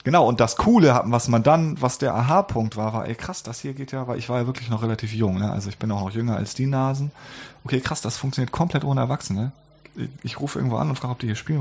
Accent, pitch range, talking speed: German, 100-130 Hz, 275 wpm